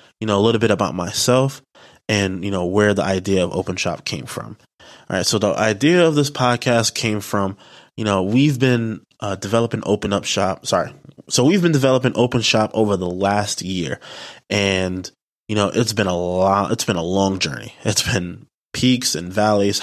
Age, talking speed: 20-39, 195 wpm